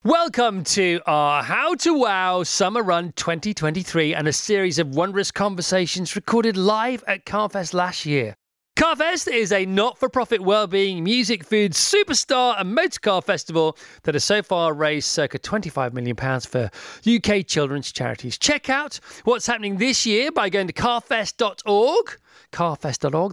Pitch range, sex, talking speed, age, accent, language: 180-250 Hz, male, 140 wpm, 30-49, British, English